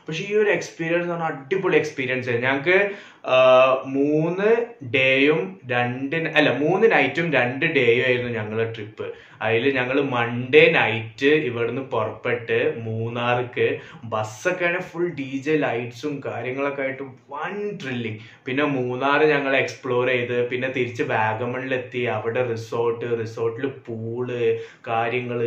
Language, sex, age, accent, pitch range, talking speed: Malayalam, male, 20-39, native, 120-150 Hz, 115 wpm